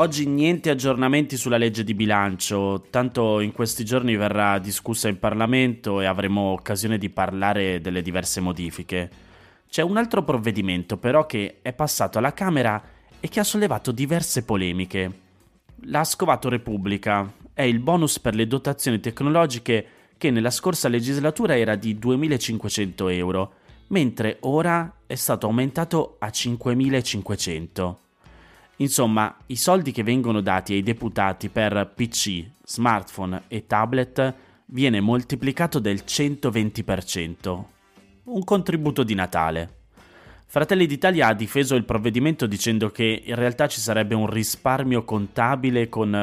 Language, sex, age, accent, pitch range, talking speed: Italian, male, 30-49, native, 95-125 Hz, 130 wpm